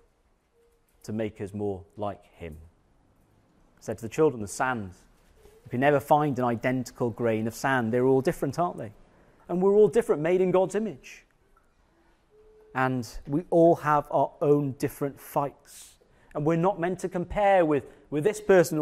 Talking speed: 170 wpm